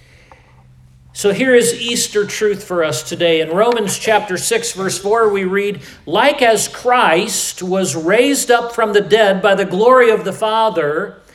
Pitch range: 160-225 Hz